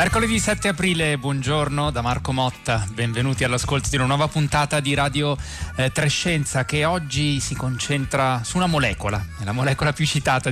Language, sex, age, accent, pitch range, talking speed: Italian, male, 30-49, native, 105-135 Hz, 160 wpm